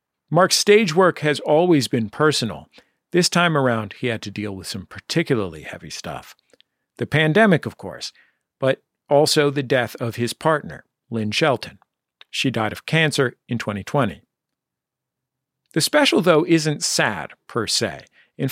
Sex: male